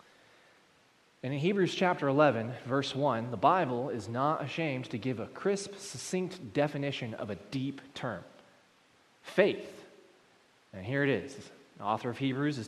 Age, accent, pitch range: 20-39, American, 130-170 Hz